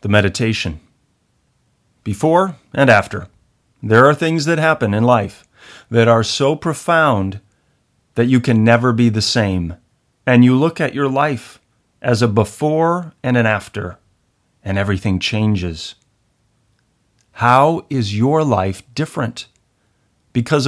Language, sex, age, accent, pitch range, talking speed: English, male, 40-59, American, 100-130 Hz, 130 wpm